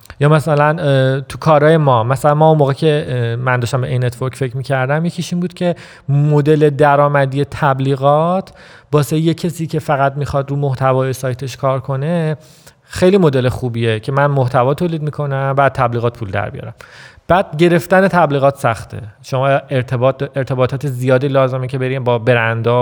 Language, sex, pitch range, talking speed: Persian, male, 125-150 Hz, 160 wpm